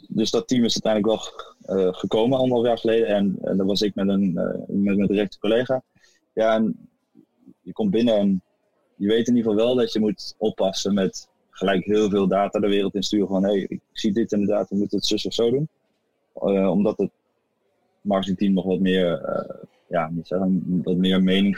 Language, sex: Dutch, male